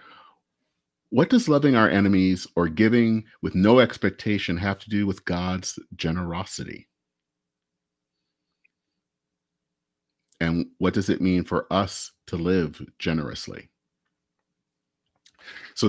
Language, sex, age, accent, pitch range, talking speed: English, male, 40-59, American, 85-120 Hz, 100 wpm